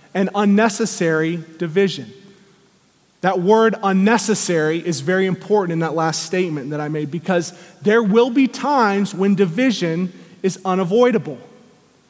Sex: male